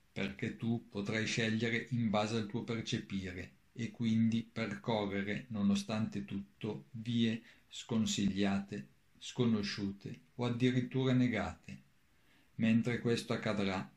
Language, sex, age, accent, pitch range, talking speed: Italian, male, 50-69, native, 100-115 Hz, 100 wpm